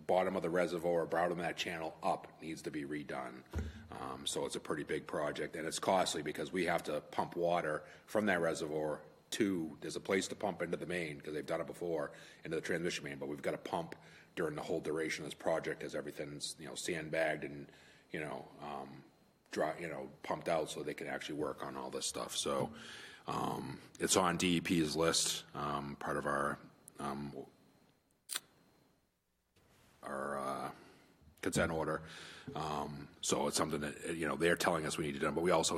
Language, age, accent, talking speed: English, 30-49, American, 200 wpm